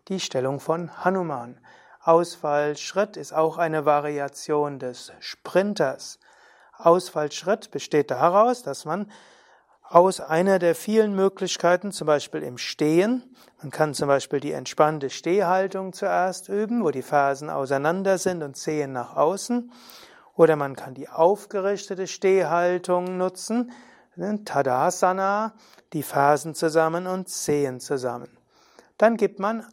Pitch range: 150-200 Hz